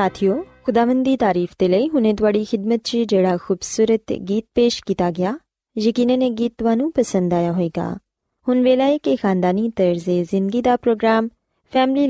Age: 20-39